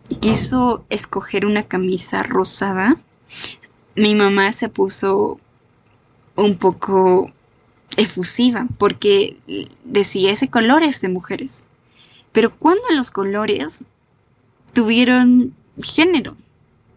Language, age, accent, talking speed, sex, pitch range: Spanish, 10-29, Mexican, 85 wpm, female, 190-260 Hz